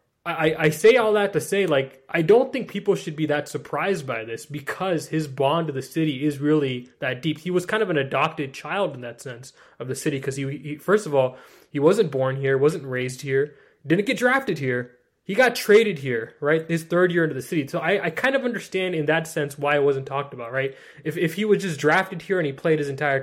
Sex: male